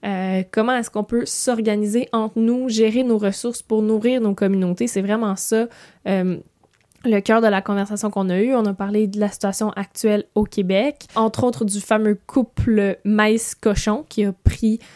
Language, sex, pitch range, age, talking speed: French, female, 195-230 Hz, 10-29, 180 wpm